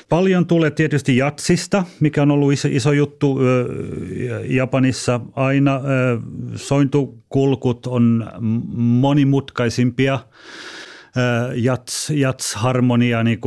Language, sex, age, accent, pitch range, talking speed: Finnish, male, 30-49, native, 110-135 Hz, 65 wpm